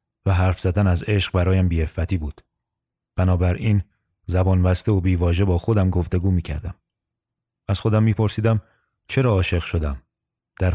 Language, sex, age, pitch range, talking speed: Persian, male, 30-49, 85-105 Hz, 135 wpm